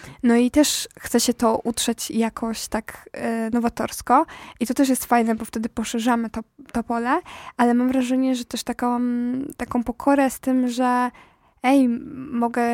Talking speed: 160 wpm